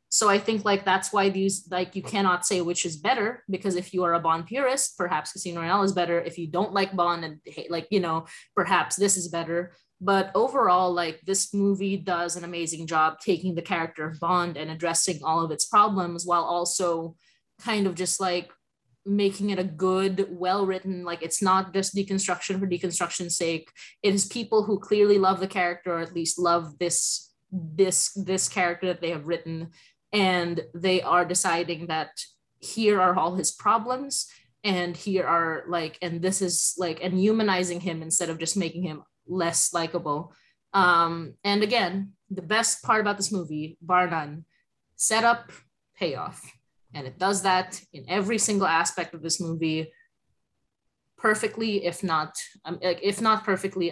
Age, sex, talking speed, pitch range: 20-39, female, 180 wpm, 170-195 Hz